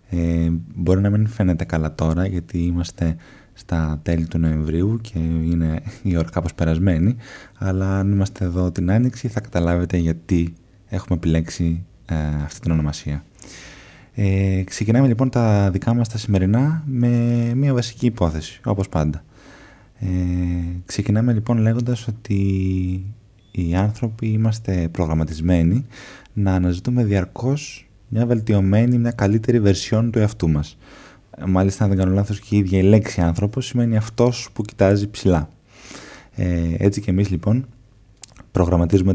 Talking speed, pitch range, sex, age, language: 130 wpm, 85-110 Hz, male, 20-39, Greek